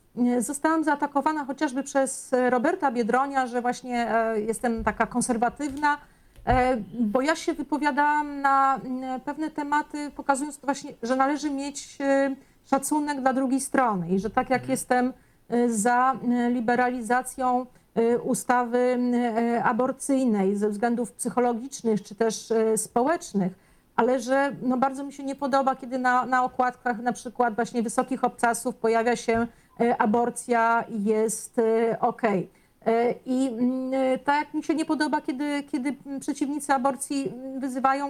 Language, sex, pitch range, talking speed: Polish, female, 240-275 Hz, 120 wpm